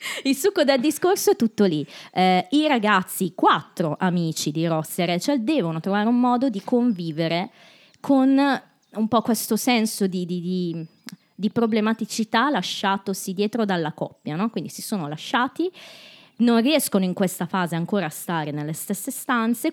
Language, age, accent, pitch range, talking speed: Italian, 20-39, native, 165-225 Hz, 160 wpm